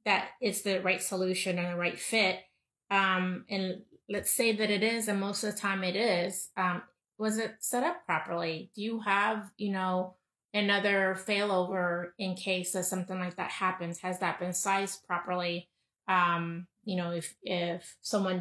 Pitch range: 180-200 Hz